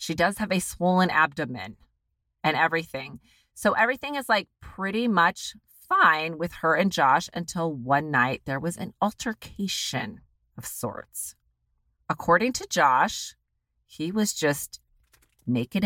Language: English